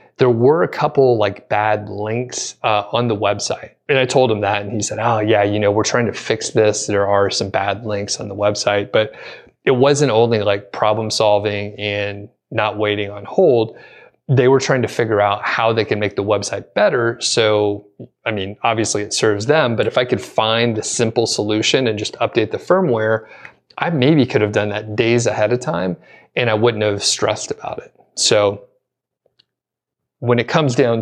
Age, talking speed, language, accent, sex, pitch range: 30-49, 200 wpm, English, American, male, 105-120 Hz